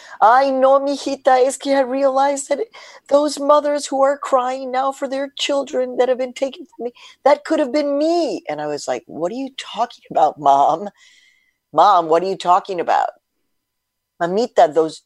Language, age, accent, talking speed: English, 50-69, American, 185 wpm